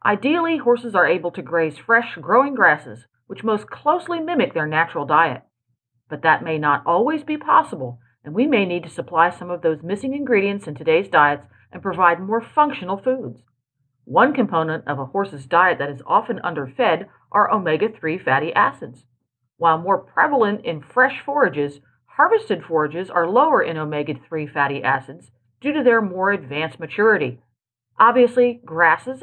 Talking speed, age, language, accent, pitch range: 160 wpm, 40-59, English, American, 150-245 Hz